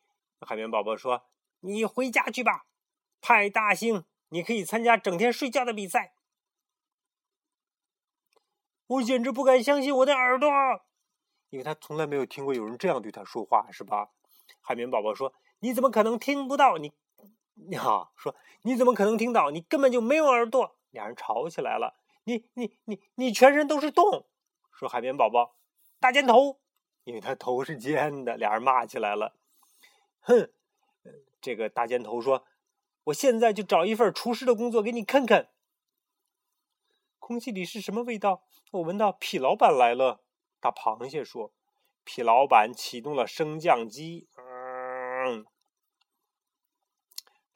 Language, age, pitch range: Chinese, 30-49, 175-260 Hz